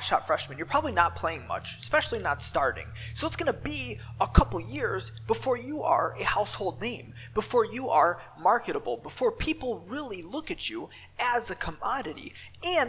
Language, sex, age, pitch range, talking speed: English, male, 20-39, 205-290 Hz, 170 wpm